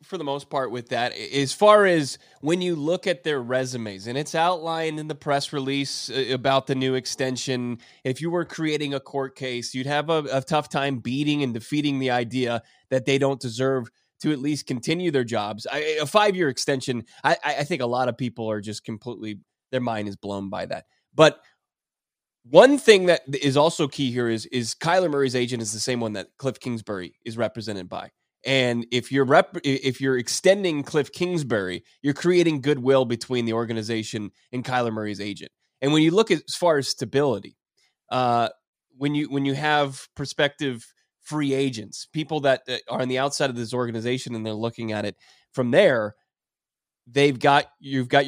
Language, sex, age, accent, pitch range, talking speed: English, male, 20-39, American, 120-150 Hz, 190 wpm